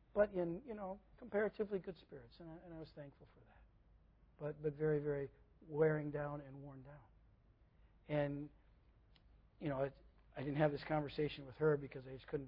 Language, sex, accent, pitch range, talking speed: English, male, American, 140-160 Hz, 190 wpm